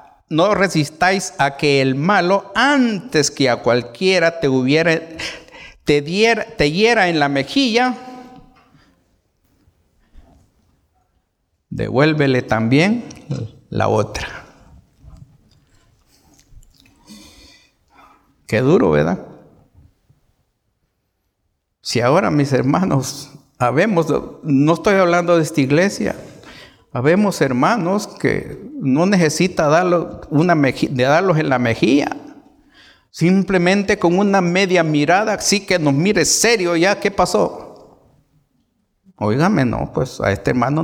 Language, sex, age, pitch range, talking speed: Spanish, male, 50-69, 110-180 Hz, 95 wpm